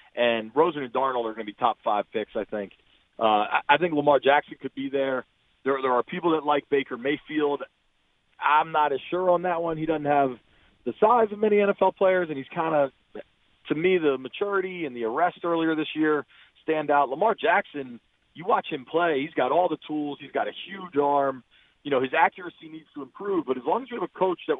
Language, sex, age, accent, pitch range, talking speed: English, male, 40-59, American, 135-180 Hz, 225 wpm